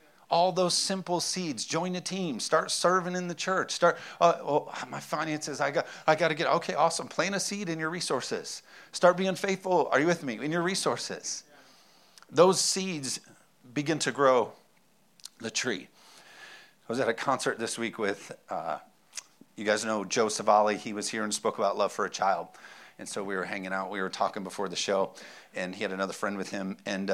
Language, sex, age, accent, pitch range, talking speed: English, male, 50-69, American, 110-180 Hz, 205 wpm